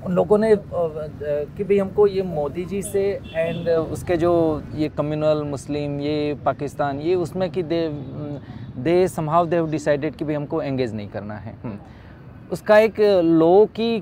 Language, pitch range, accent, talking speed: English, 145-185 Hz, Indian, 85 wpm